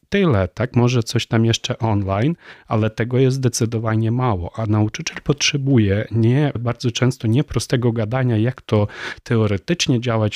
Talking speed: 145 wpm